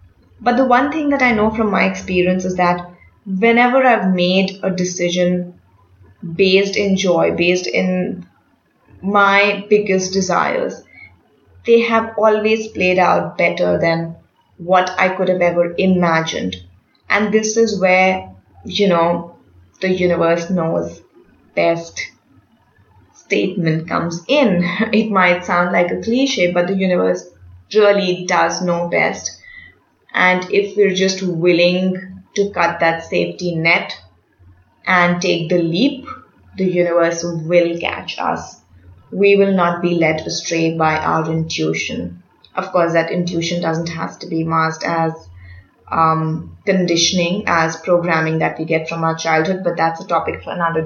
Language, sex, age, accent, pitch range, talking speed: English, female, 20-39, Indian, 165-200 Hz, 140 wpm